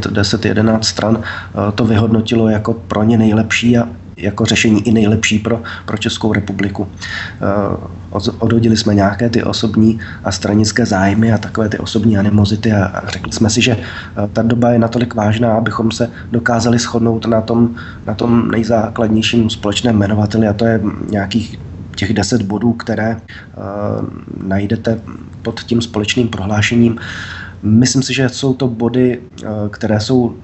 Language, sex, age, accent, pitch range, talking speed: Czech, male, 20-39, native, 105-120 Hz, 145 wpm